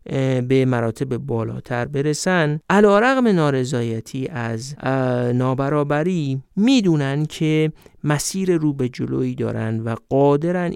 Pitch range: 125-165 Hz